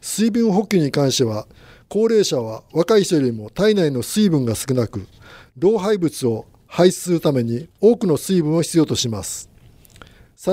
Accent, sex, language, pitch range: native, male, Japanese, 125-190 Hz